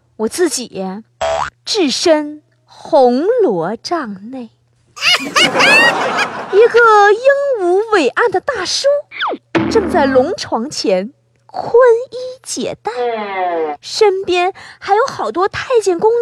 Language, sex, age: Chinese, female, 30-49